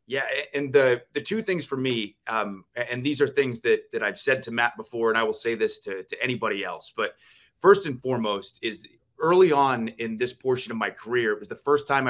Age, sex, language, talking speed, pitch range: 30-49, male, English, 235 wpm, 120-150 Hz